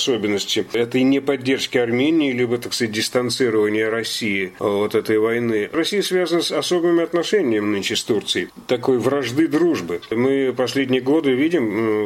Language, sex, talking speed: Russian, male, 135 wpm